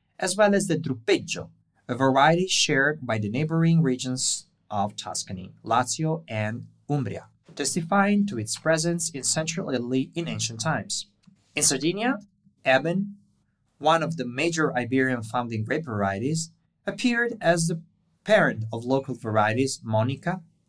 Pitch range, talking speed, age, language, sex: 110-165 Hz, 130 wpm, 20-39, English, male